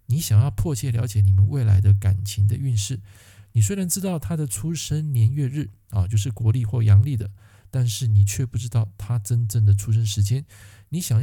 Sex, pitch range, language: male, 100-130 Hz, Chinese